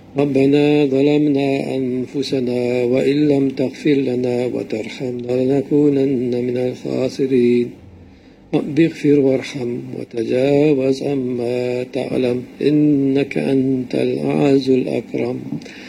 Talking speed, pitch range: 75 wpm, 125-145 Hz